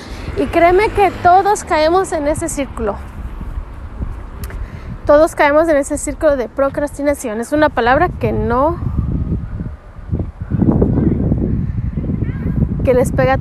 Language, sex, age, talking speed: Spanish, female, 20-39, 105 wpm